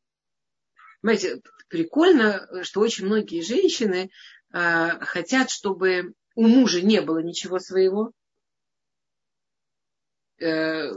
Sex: female